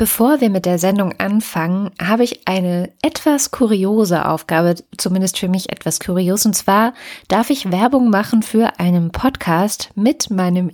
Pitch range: 175-220 Hz